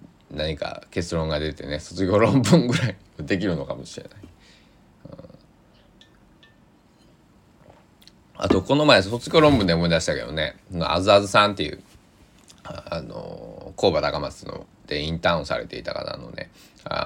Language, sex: Japanese, male